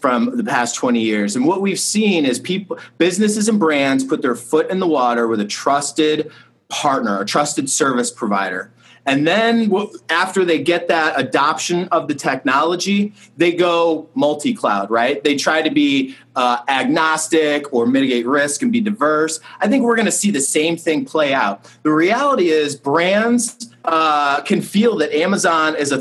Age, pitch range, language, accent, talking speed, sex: 30-49, 140-200 Hz, English, American, 175 wpm, male